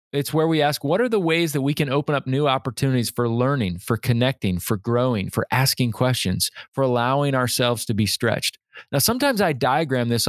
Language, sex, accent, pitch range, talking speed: English, male, American, 115-150 Hz, 205 wpm